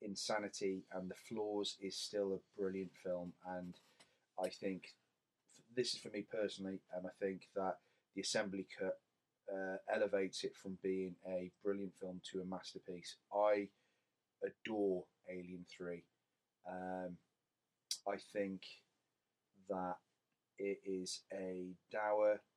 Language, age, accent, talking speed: English, 30-49, British, 125 wpm